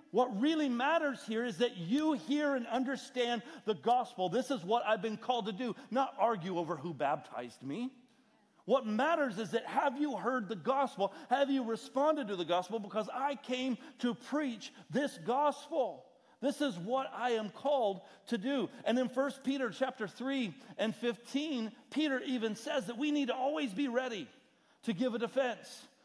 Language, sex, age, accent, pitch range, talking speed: English, male, 50-69, American, 200-265 Hz, 180 wpm